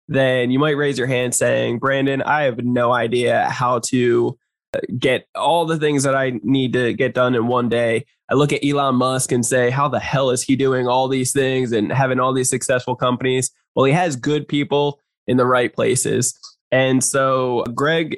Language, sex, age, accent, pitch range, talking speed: English, male, 20-39, American, 125-140 Hz, 200 wpm